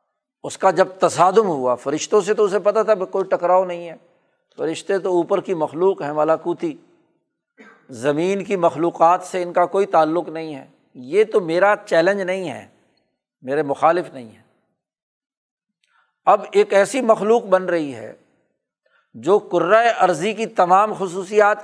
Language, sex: Urdu, male